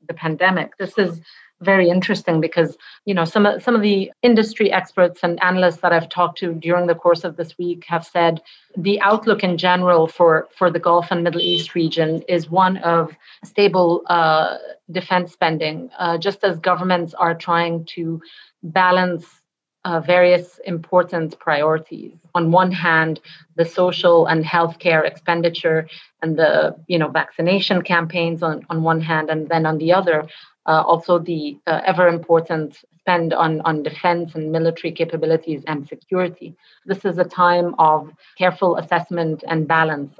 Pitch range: 160-180 Hz